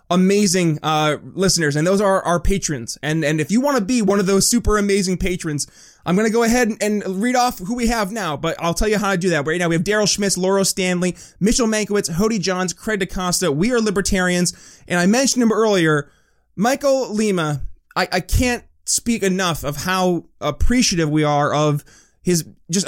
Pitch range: 155-195 Hz